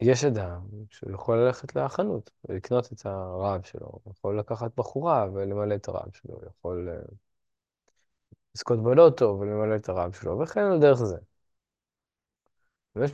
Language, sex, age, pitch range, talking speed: Hebrew, male, 20-39, 95-120 Hz, 130 wpm